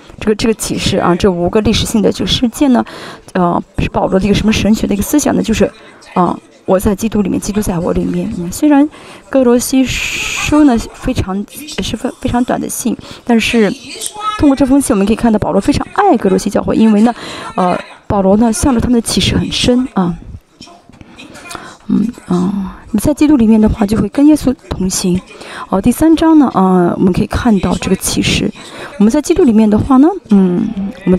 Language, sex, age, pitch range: Chinese, female, 20-39, 200-275 Hz